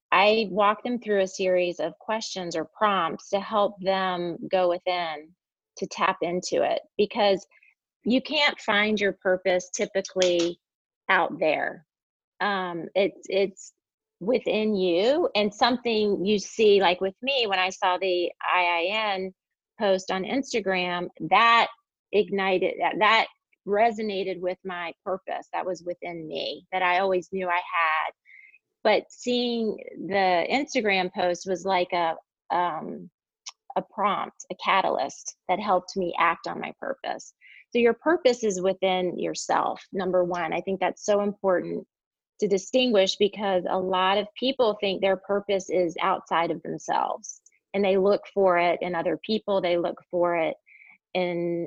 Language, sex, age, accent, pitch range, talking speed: English, female, 30-49, American, 180-215 Hz, 145 wpm